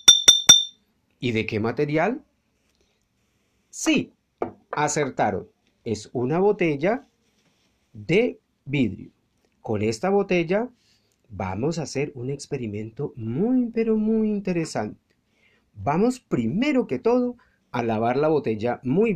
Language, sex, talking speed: Spanish, male, 100 wpm